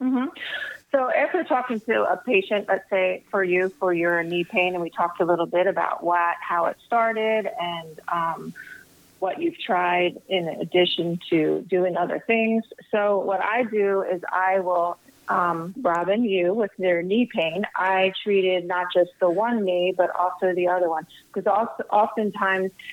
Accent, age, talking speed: American, 30-49, 170 wpm